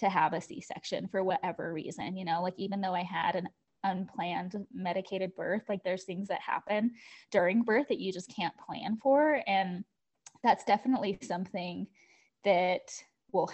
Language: English